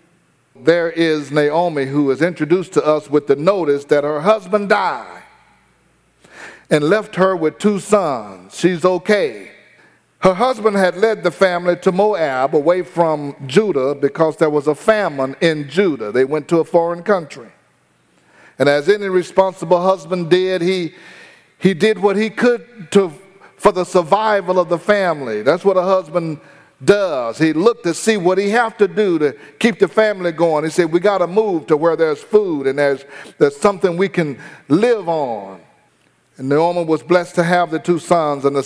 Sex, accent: male, American